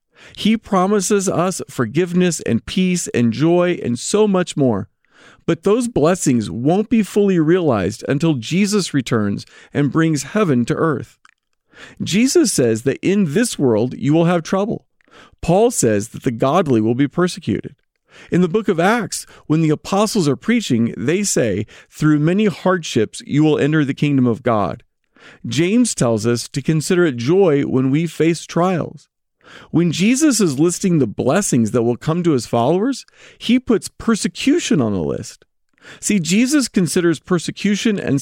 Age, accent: 40-59, American